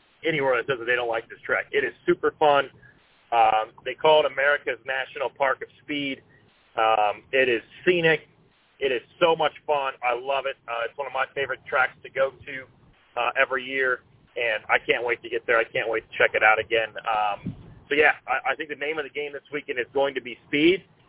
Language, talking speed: English, 230 wpm